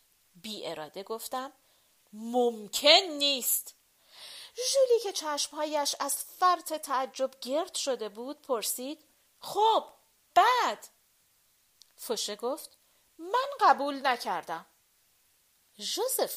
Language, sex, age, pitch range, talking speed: Persian, female, 40-59, 230-370 Hz, 85 wpm